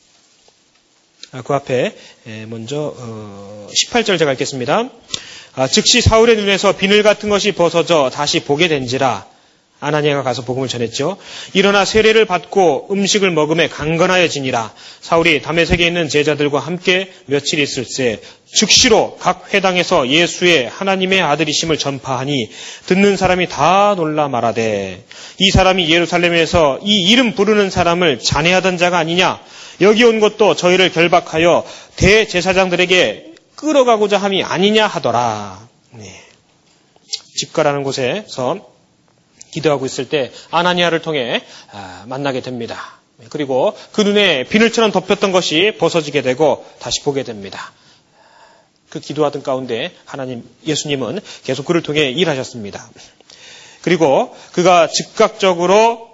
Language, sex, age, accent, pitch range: Korean, male, 30-49, native, 140-190 Hz